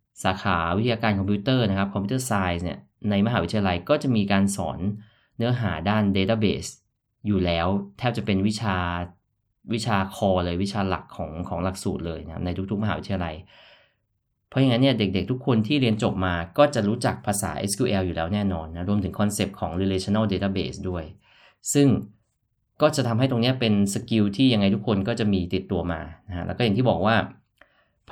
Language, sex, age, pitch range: Thai, male, 20-39, 95-115 Hz